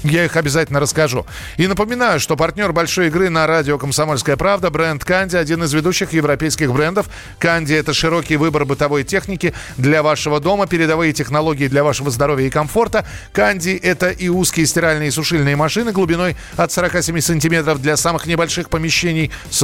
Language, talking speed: Russian, 165 wpm